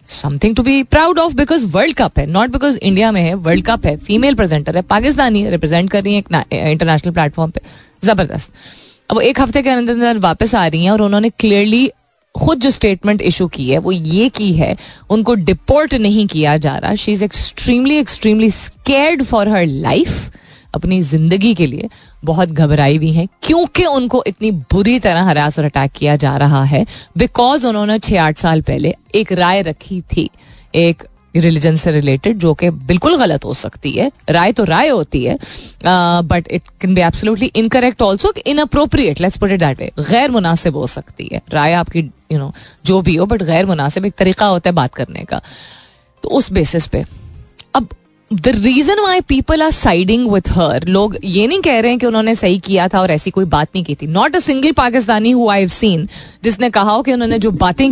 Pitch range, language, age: 165-230 Hz, Hindi, 20-39